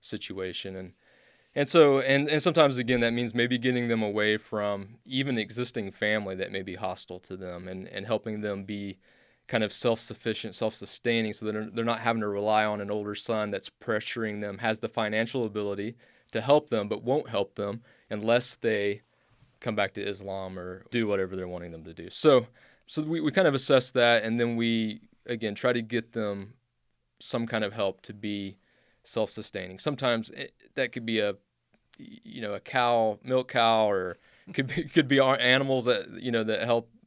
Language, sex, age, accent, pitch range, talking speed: English, male, 20-39, American, 105-125 Hz, 195 wpm